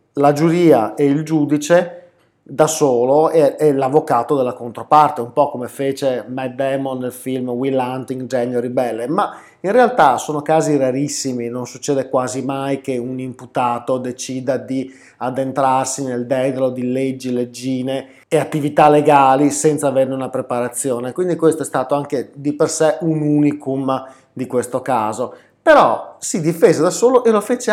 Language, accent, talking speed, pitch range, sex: Italian, native, 155 wpm, 130-160 Hz, male